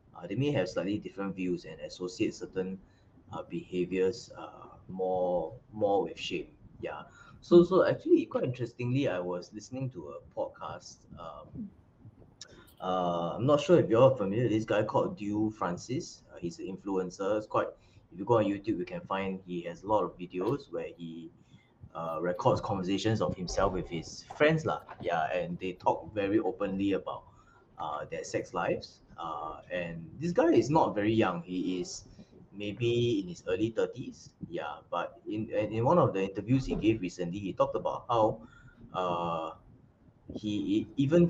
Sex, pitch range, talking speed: male, 90-120 Hz, 170 wpm